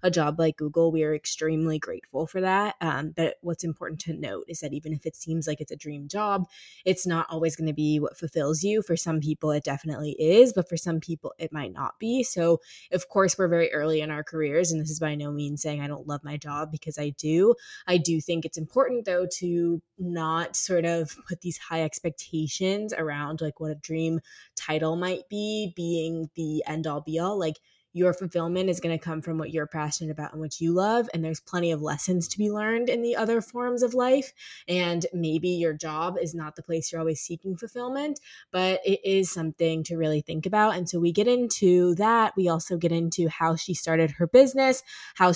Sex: female